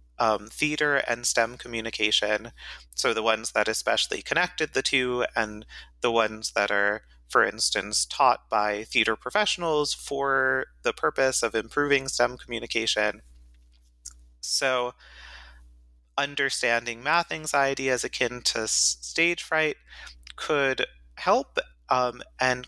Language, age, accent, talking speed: English, 30-49, American, 115 wpm